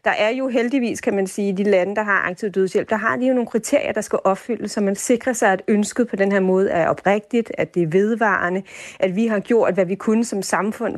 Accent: native